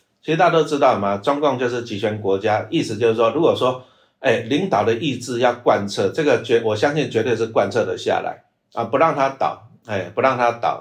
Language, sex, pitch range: Chinese, male, 105-145 Hz